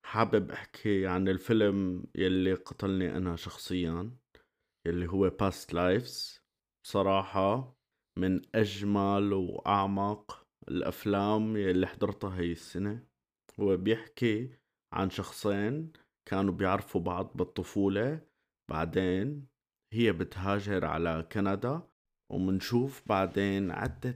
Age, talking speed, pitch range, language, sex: 30-49, 90 wpm, 90-105 Hz, Arabic, male